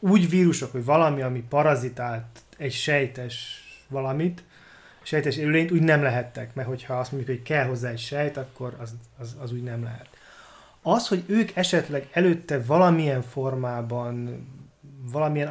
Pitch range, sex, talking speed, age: 125-155 Hz, male, 145 wpm, 30-49